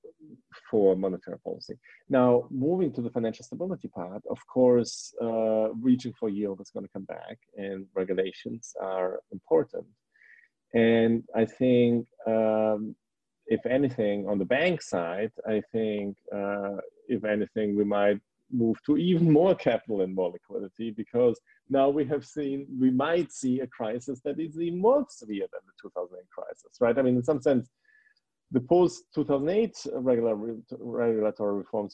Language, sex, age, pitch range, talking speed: English, male, 40-59, 110-145 Hz, 150 wpm